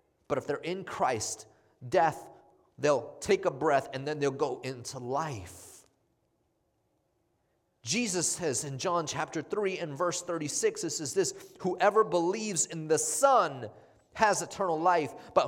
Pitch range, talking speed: 125-165 Hz, 145 wpm